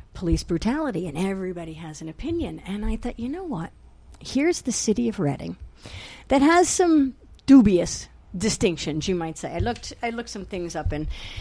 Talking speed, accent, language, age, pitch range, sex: 180 wpm, American, English, 50-69, 165-235 Hz, female